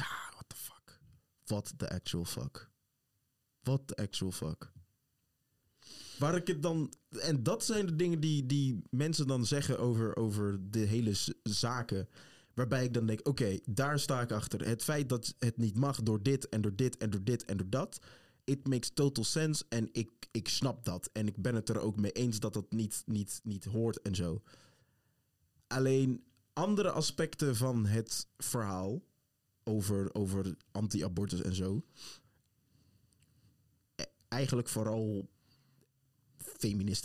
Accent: Dutch